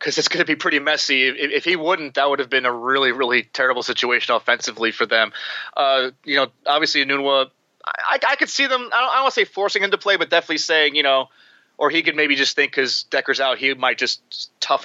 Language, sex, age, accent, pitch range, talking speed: English, male, 30-49, American, 125-155 Hz, 250 wpm